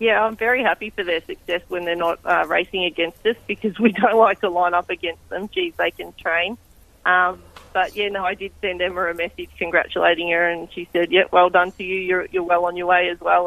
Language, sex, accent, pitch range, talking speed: English, female, Australian, 165-190 Hz, 245 wpm